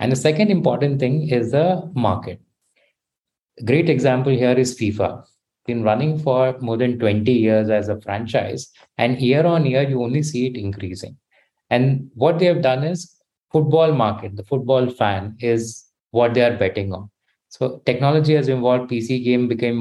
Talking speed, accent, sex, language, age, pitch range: 170 wpm, Indian, male, English, 20-39, 110-140 Hz